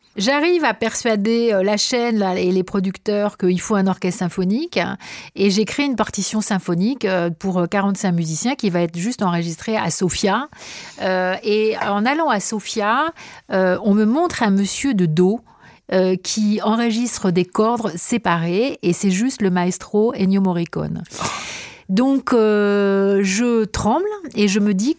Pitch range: 185-225 Hz